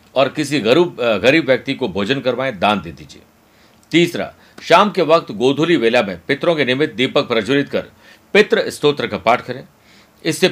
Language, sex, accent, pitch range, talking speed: Hindi, male, native, 120-155 Hz, 170 wpm